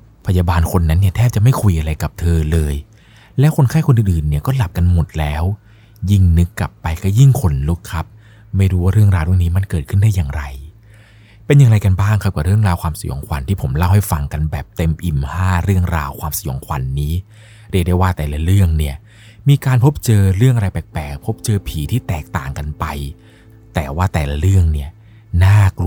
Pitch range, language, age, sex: 80-105 Hz, Thai, 20-39, male